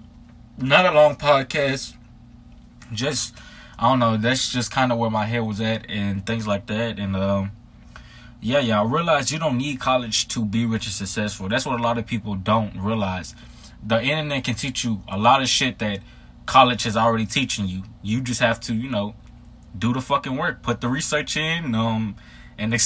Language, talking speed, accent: English, 200 wpm, American